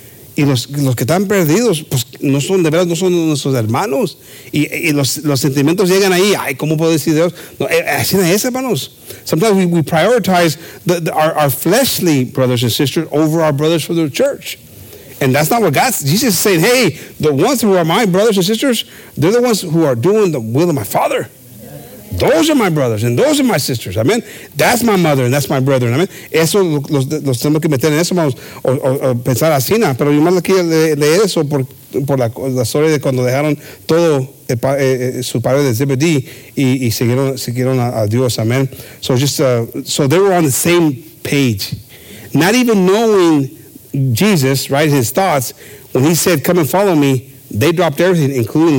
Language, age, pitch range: English, 50-69, 130-175 Hz